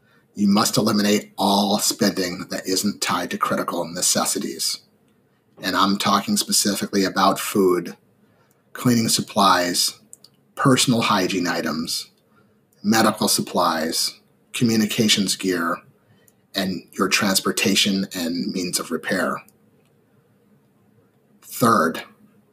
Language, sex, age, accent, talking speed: English, male, 30-49, American, 90 wpm